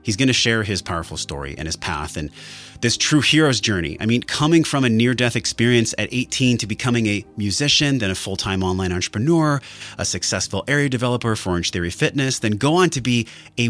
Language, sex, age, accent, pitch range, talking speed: English, male, 30-49, American, 95-125 Hz, 205 wpm